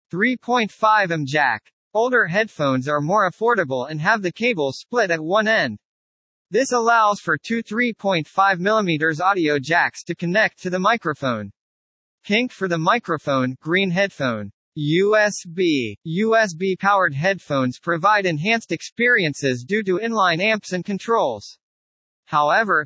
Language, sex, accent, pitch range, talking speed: English, male, American, 150-215 Hz, 125 wpm